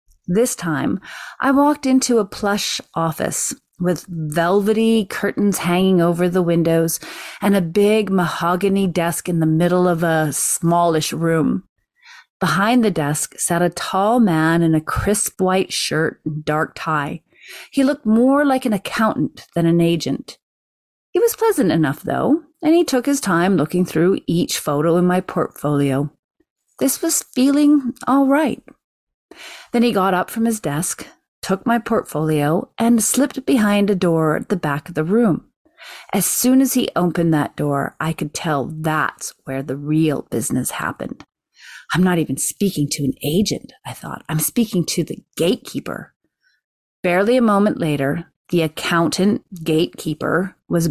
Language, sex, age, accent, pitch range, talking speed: English, female, 30-49, American, 160-230 Hz, 155 wpm